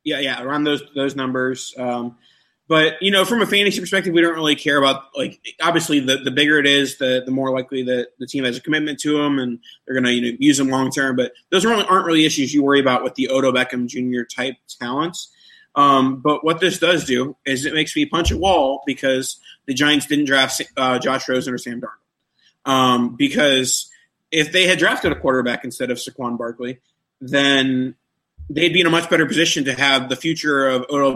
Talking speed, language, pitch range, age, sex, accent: 220 wpm, English, 125-150 Hz, 20-39, male, American